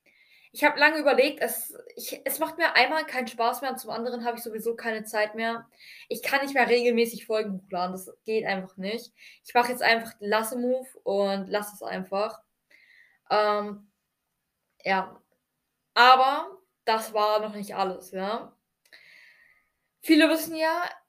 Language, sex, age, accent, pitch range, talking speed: German, female, 10-29, German, 210-255 Hz, 155 wpm